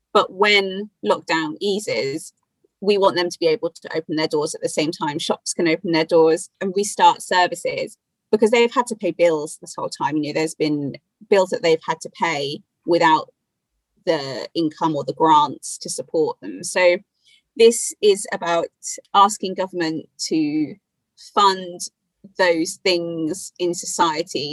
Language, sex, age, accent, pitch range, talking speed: English, female, 30-49, British, 160-235 Hz, 160 wpm